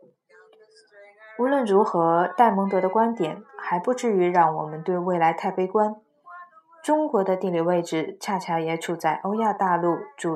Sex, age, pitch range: female, 20-39, 170-215 Hz